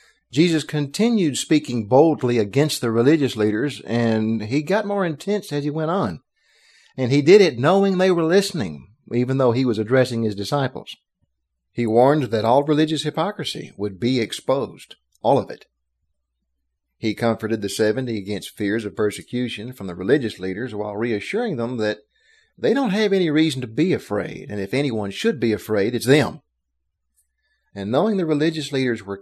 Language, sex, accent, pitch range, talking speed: English, male, American, 105-150 Hz, 170 wpm